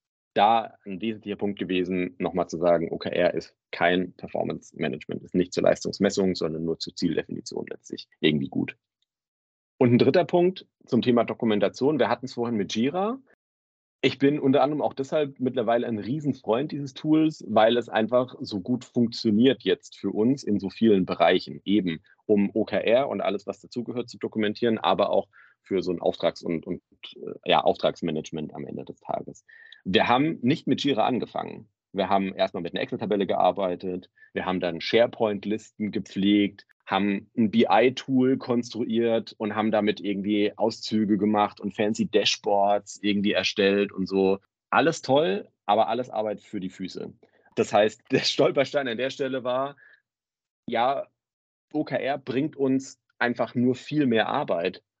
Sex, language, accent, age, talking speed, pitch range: male, German, German, 40-59, 155 wpm, 100-125 Hz